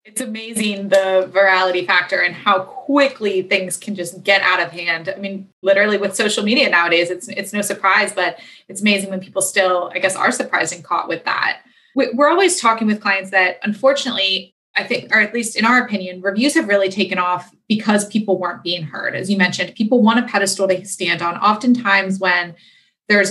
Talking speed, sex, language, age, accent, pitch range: 200 wpm, female, English, 20-39, American, 185-215 Hz